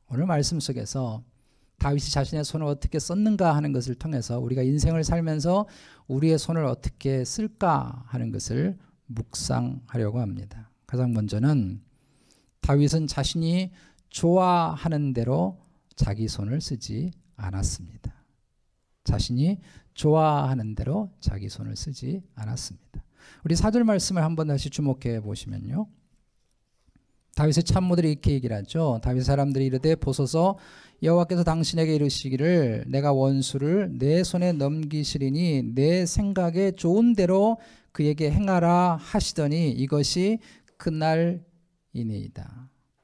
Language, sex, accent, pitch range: Korean, male, native, 130-175 Hz